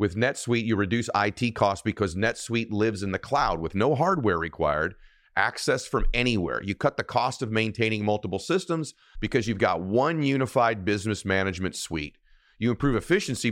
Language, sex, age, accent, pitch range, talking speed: English, male, 40-59, American, 95-115 Hz, 170 wpm